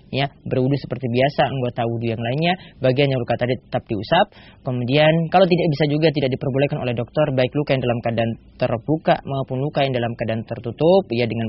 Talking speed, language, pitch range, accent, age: 190 wpm, Indonesian, 125-155 Hz, native, 20-39